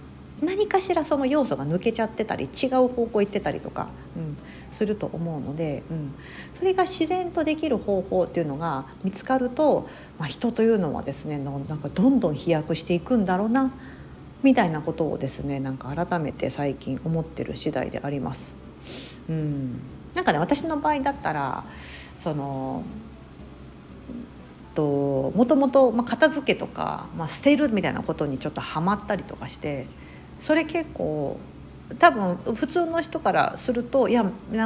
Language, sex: Japanese, female